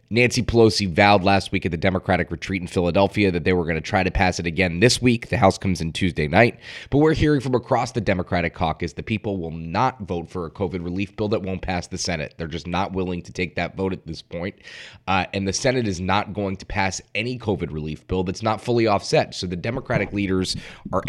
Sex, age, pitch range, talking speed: male, 20-39, 85-105 Hz, 240 wpm